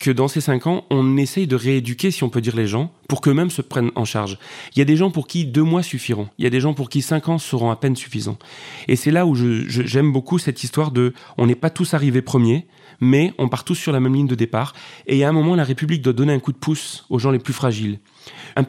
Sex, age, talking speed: male, 30-49, 285 wpm